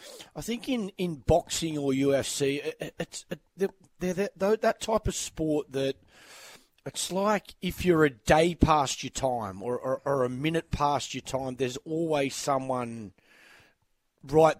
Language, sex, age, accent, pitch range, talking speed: English, male, 30-49, Australian, 135-170 Hz, 165 wpm